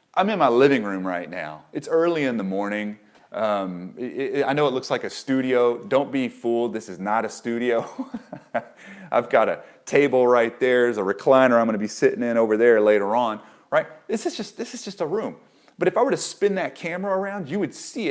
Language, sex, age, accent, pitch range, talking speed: English, male, 30-49, American, 105-175 Hz, 215 wpm